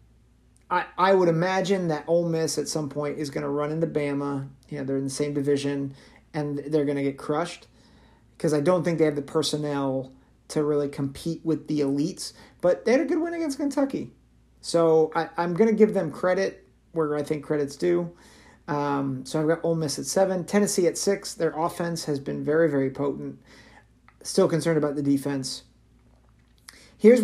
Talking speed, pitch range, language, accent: 195 wpm, 145-180 Hz, English, American